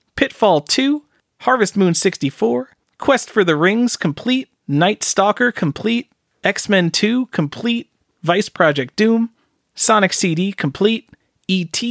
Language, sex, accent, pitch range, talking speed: English, male, American, 150-215 Hz, 115 wpm